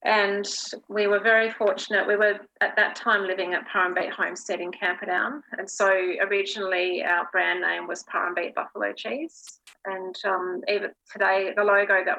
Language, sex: English, female